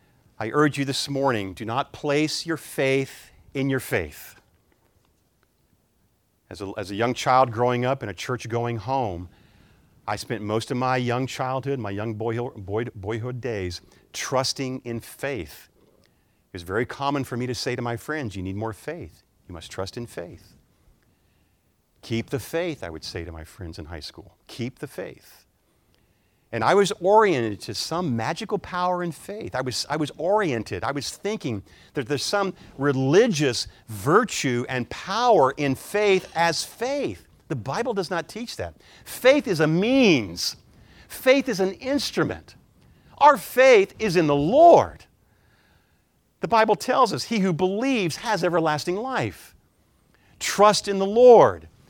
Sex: male